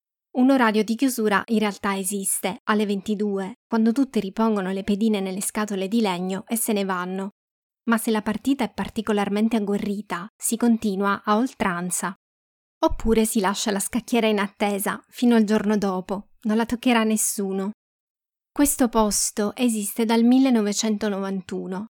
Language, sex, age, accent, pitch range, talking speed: Italian, female, 20-39, native, 195-230 Hz, 145 wpm